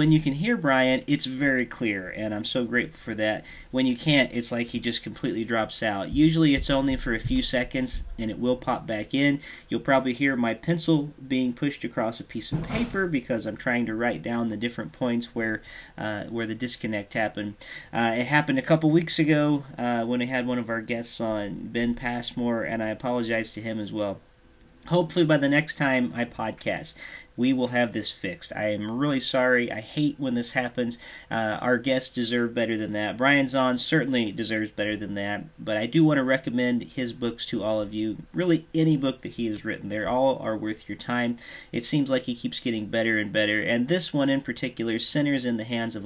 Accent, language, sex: American, English, male